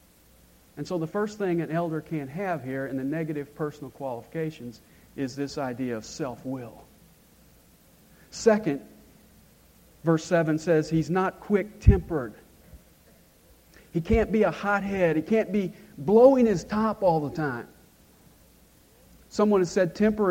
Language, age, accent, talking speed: English, 50-69, American, 135 wpm